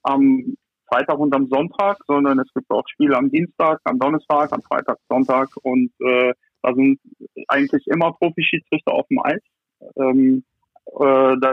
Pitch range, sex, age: 140-170 Hz, male, 50-69